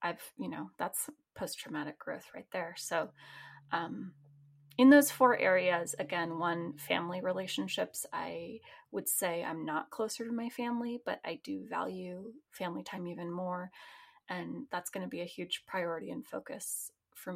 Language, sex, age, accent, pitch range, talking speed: English, female, 20-39, American, 170-255 Hz, 160 wpm